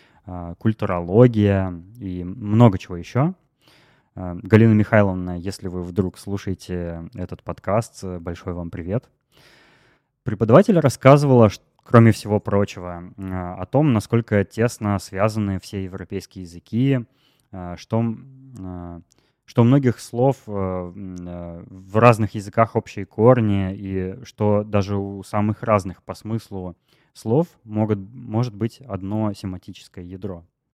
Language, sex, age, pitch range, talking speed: Russian, male, 20-39, 95-125 Hz, 100 wpm